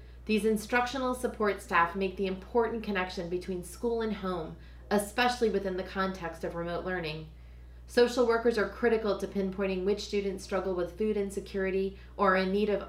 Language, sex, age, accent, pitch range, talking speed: English, female, 30-49, American, 180-205 Hz, 170 wpm